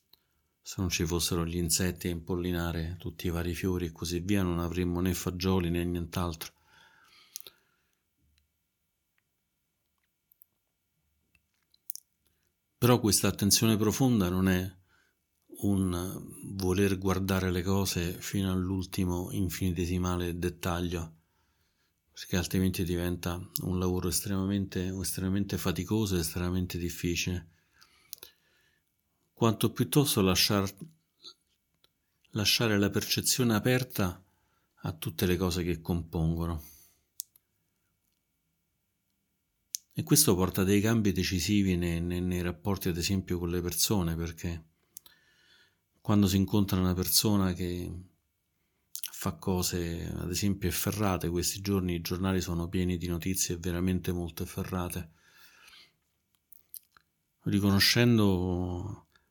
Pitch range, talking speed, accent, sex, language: 85-95 Hz, 100 wpm, native, male, Italian